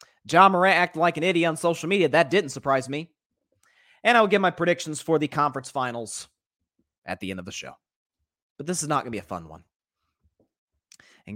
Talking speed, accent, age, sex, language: 210 wpm, American, 30-49, male, English